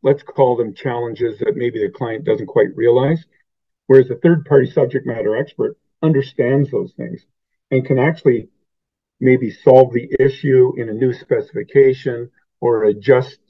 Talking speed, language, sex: 150 wpm, English, male